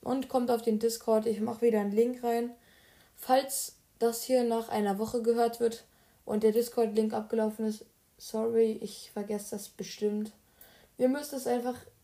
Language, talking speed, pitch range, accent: German, 170 wpm, 215-240 Hz, German